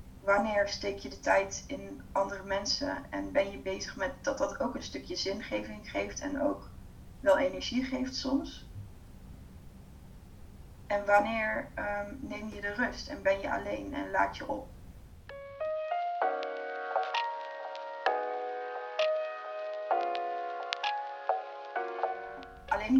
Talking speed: 105 wpm